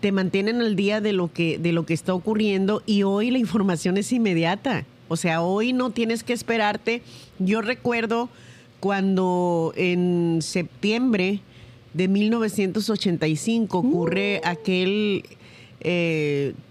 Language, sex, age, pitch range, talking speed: Spanish, female, 40-59, 165-215 Hz, 120 wpm